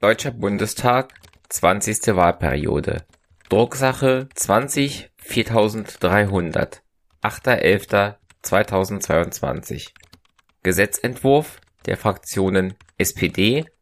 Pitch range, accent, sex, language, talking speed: 95-125 Hz, German, male, German, 50 wpm